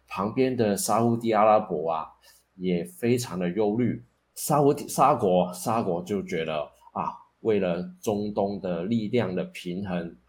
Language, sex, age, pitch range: Chinese, male, 20-39, 85-105 Hz